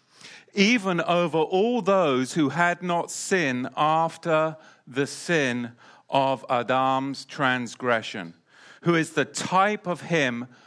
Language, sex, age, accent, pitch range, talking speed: English, male, 50-69, British, 145-190 Hz, 110 wpm